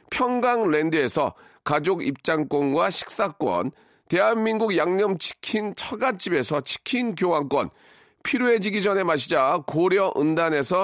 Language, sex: Korean, male